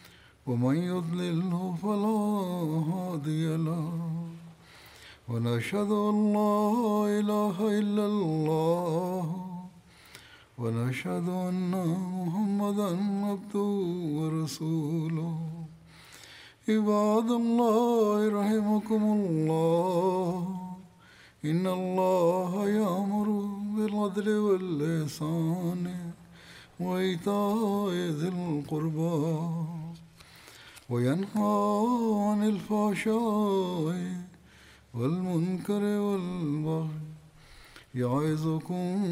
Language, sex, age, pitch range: Malayalam, male, 60-79, 160-205 Hz